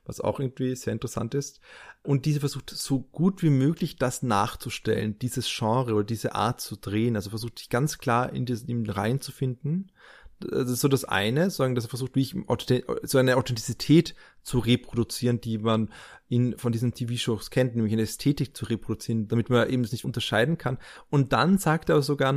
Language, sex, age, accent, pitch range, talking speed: German, male, 20-39, German, 120-145 Hz, 195 wpm